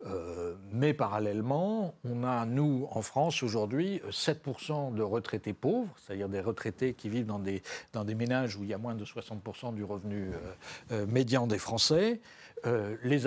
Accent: French